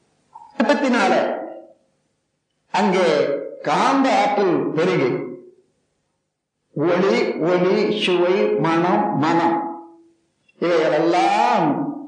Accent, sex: native, male